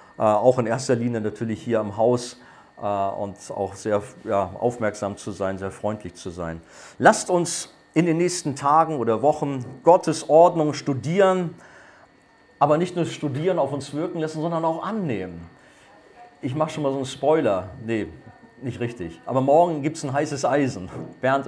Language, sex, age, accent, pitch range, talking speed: German, male, 40-59, German, 110-150 Hz, 170 wpm